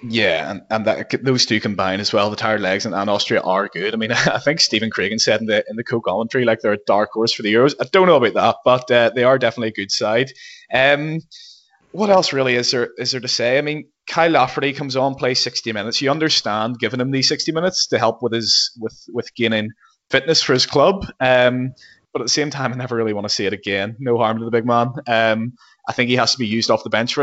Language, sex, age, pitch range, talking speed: English, male, 20-39, 110-140 Hz, 260 wpm